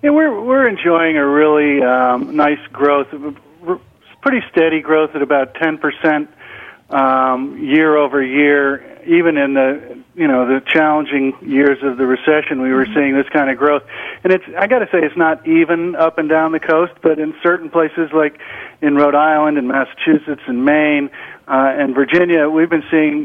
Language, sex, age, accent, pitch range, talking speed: English, male, 50-69, American, 140-170 Hz, 190 wpm